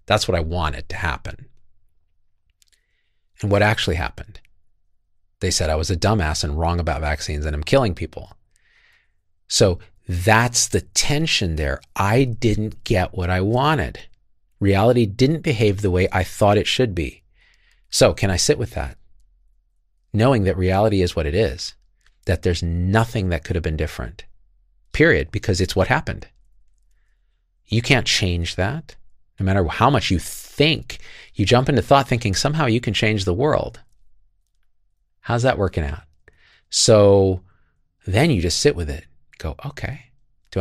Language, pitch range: English, 85-120 Hz